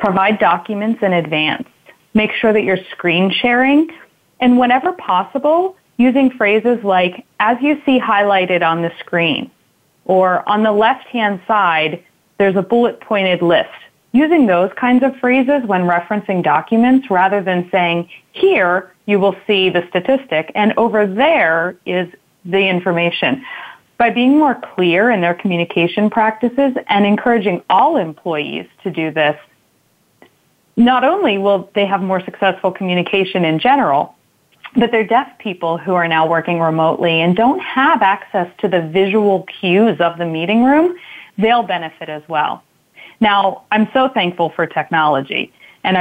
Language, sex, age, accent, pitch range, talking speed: English, female, 20-39, American, 170-225 Hz, 145 wpm